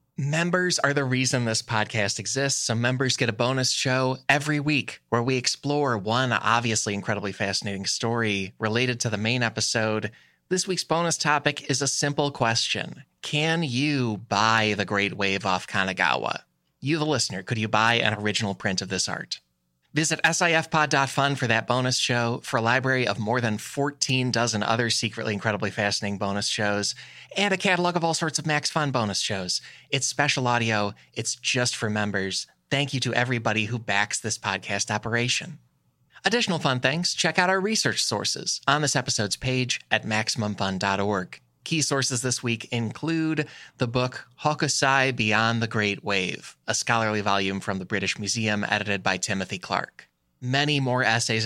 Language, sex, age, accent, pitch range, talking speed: English, male, 20-39, American, 105-135 Hz, 165 wpm